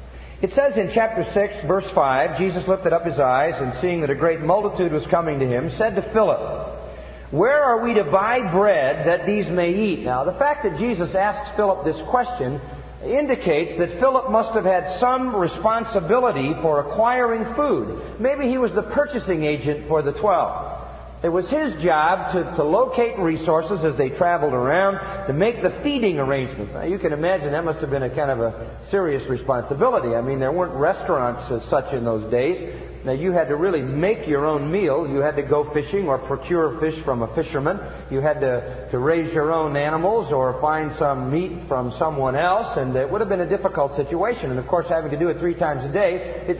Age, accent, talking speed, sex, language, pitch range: 50-69, American, 205 wpm, male, English, 140-195 Hz